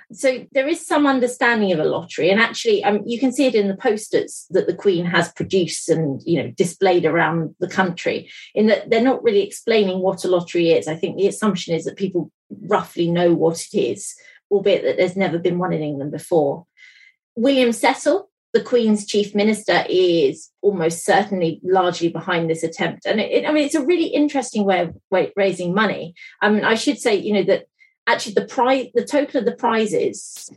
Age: 30-49